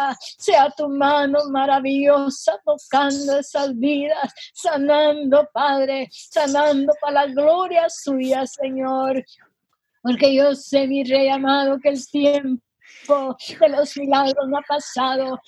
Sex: female